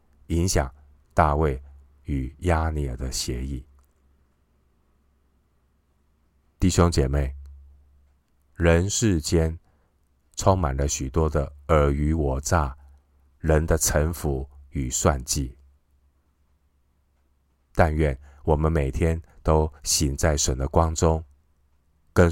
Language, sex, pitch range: Chinese, male, 70-80 Hz